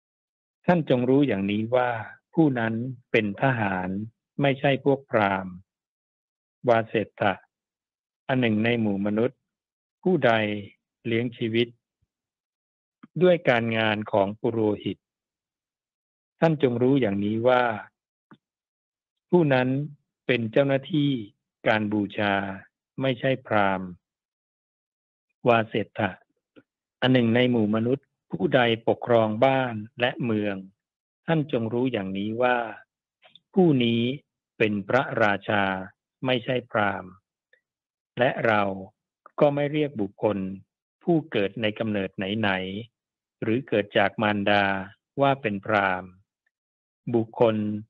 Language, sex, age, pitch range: Thai, male, 60-79, 100-130 Hz